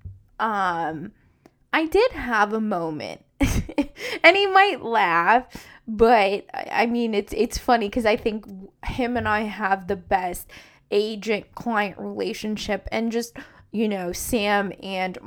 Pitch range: 195-245 Hz